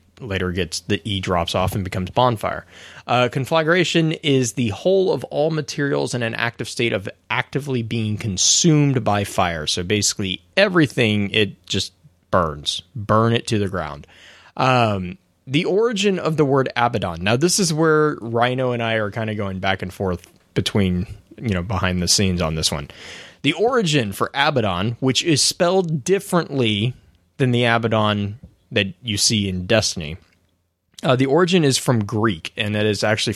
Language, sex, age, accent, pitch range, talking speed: English, male, 20-39, American, 95-130 Hz, 170 wpm